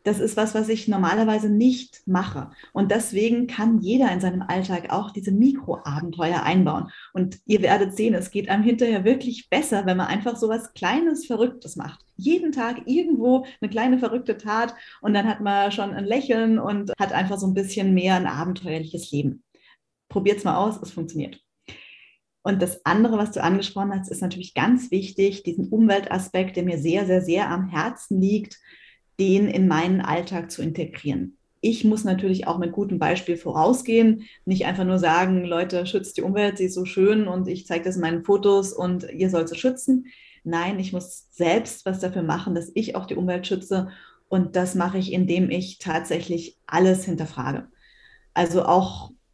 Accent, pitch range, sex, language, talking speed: German, 180-215 Hz, female, German, 180 wpm